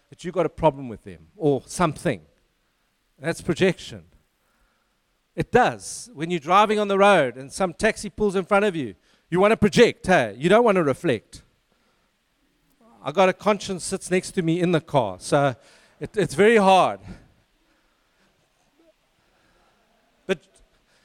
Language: English